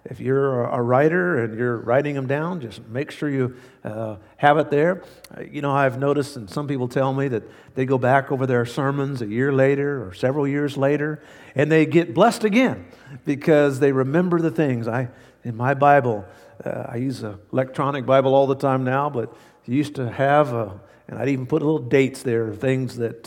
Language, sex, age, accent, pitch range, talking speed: English, male, 50-69, American, 125-175 Hz, 205 wpm